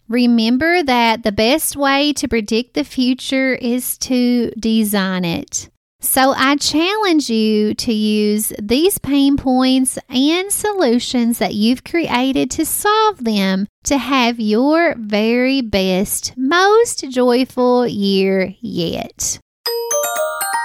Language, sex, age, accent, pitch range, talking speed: English, female, 30-49, American, 220-295 Hz, 115 wpm